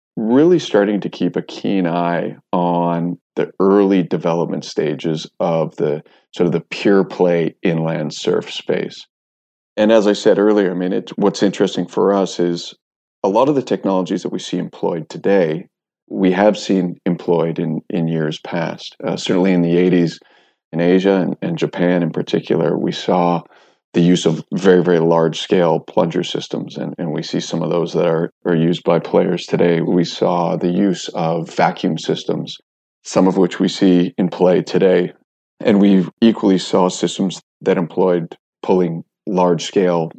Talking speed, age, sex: 170 wpm, 40-59, male